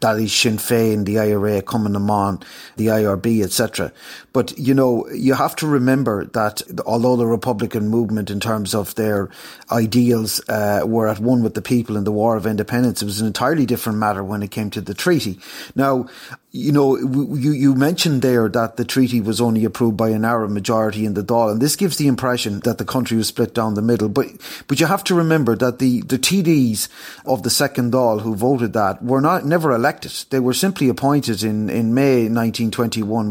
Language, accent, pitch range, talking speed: English, Irish, 110-135 Hz, 205 wpm